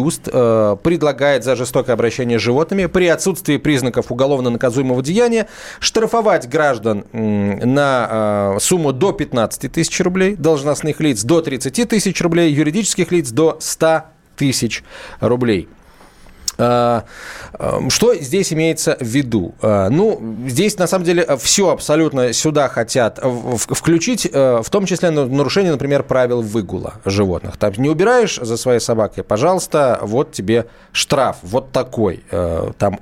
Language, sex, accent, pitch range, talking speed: Russian, male, native, 115-160 Hz, 125 wpm